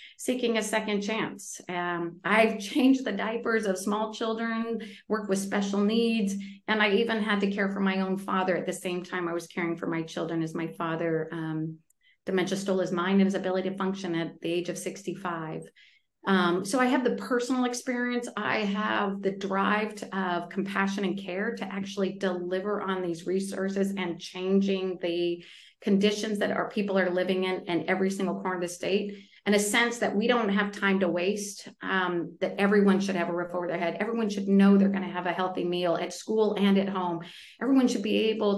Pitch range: 180-210 Hz